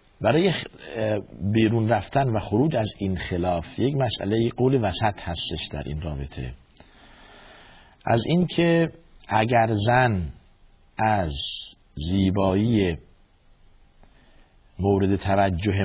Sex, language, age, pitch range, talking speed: male, Persian, 50-69, 90-125 Hz, 90 wpm